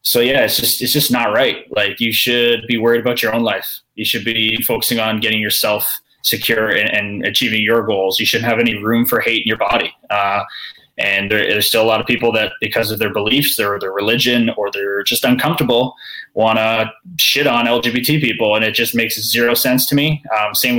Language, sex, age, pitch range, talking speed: English, male, 20-39, 110-130 Hz, 220 wpm